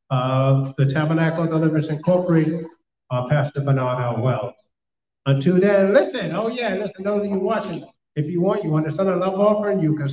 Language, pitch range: English, 135-175 Hz